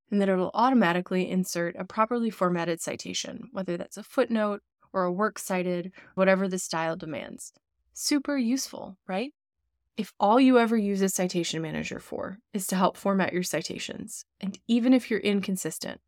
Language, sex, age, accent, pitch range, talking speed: English, female, 20-39, American, 175-220 Hz, 165 wpm